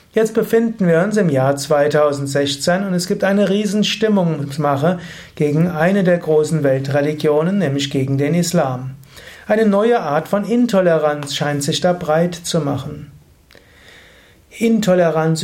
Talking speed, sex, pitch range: 130 wpm, male, 145-185 Hz